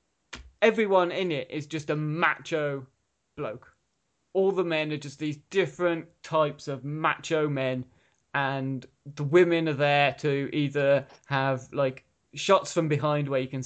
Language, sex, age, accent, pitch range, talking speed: English, male, 20-39, British, 135-170 Hz, 150 wpm